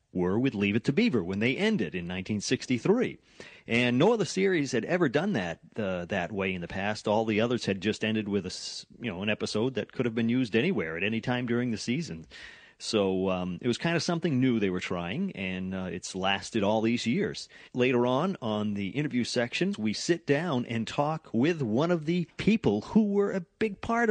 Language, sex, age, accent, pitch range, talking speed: English, male, 40-59, American, 95-140 Hz, 220 wpm